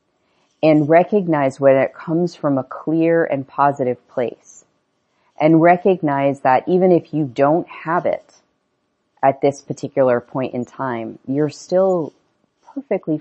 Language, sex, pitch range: English, female, 125-150 Hz